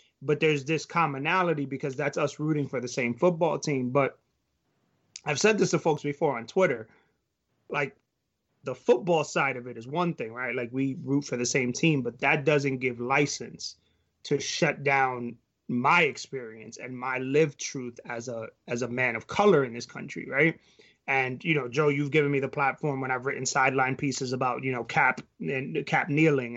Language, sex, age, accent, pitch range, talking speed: English, male, 30-49, American, 130-155 Hz, 190 wpm